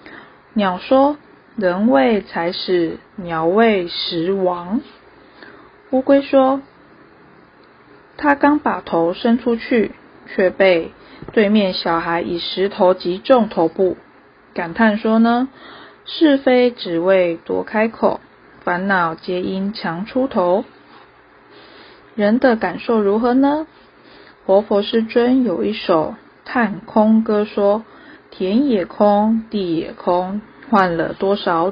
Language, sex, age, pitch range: Chinese, female, 20-39, 180-235 Hz